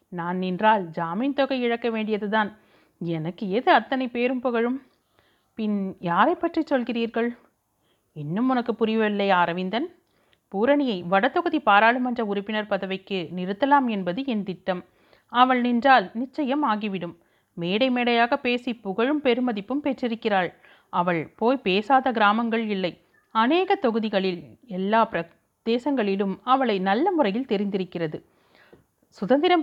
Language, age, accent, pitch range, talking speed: Tamil, 30-49, native, 190-255 Hz, 105 wpm